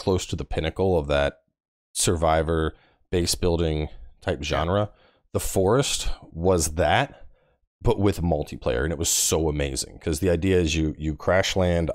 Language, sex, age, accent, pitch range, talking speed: English, male, 30-49, American, 75-105 Hz, 155 wpm